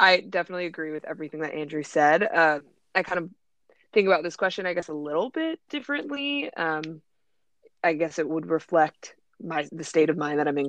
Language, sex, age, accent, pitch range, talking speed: English, female, 20-39, American, 155-185 Hz, 200 wpm